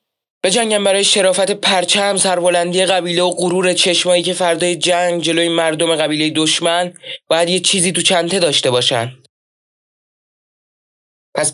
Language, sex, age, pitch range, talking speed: Persian, male, 20-39, 155-185 Hz, 130 wpm